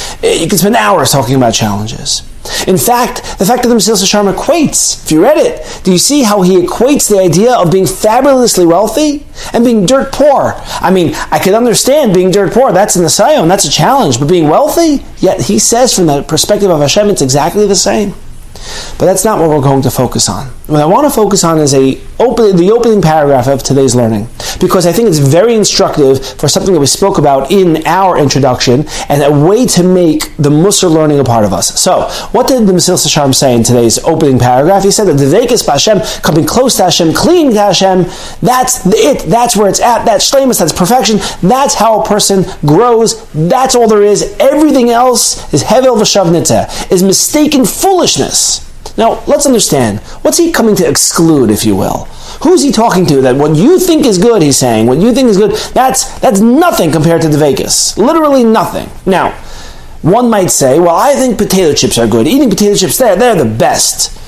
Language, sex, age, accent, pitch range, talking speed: English, male, 40-59, American, 150-235 Hz, 210 wpm